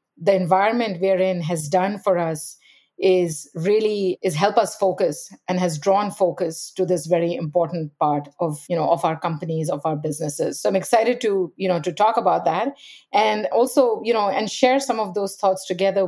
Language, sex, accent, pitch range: English, female, Indian, 180-225 Hz